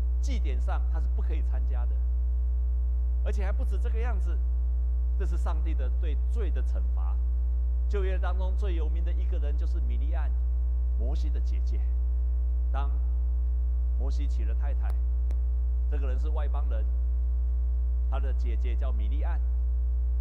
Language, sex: Chinese, male